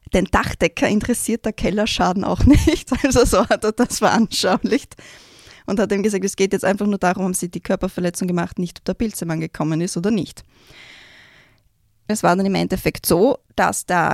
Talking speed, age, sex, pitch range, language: 185 wpm, 20-39, female, 180-230 Hz, German